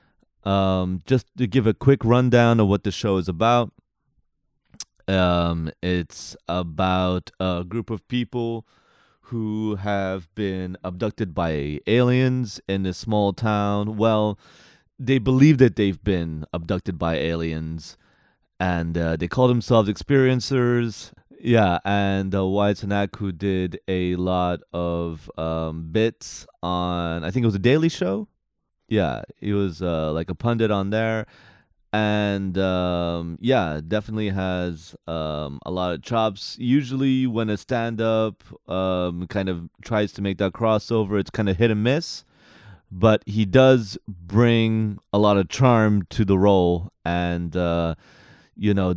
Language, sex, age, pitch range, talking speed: English, male, 30-49, 90-110 Hz, 145 wpm